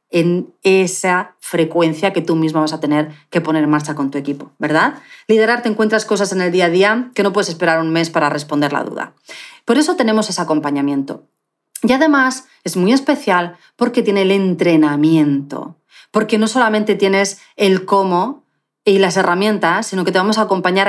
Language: Spanish